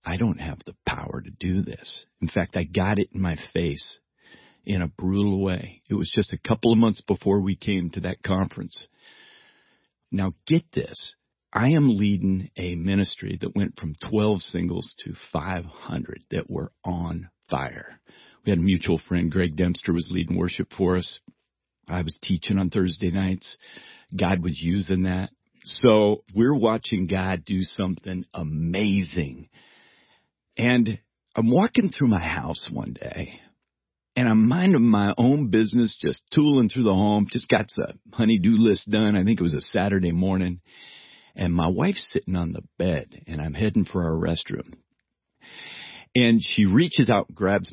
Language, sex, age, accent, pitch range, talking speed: English, male, 50-69, American, 90-110 Hz, 165 wpm